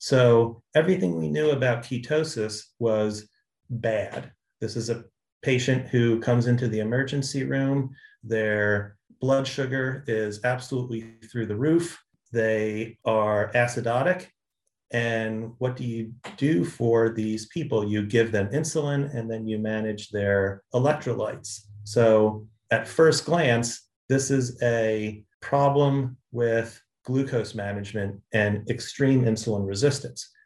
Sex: male